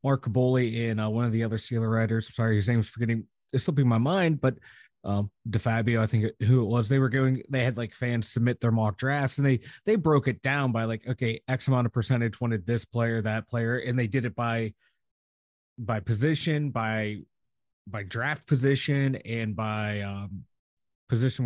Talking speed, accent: 205 wpm, American